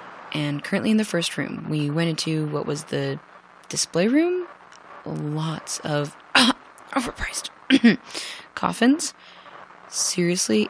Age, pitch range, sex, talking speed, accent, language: 20-39, 150-220 Hz, female, 110 wpm, American, English